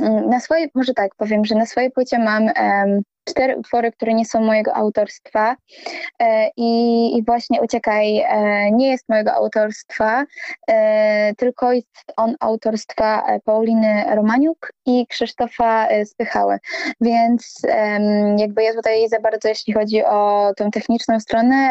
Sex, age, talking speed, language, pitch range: female, 20-39, 140 wpm, Polish, 215-255 Hz